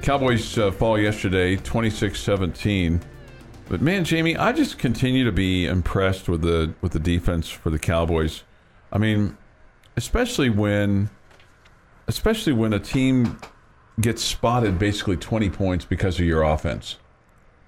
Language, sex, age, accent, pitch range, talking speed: English, male, 50-69, American, 90-110 Hz, 135 wpm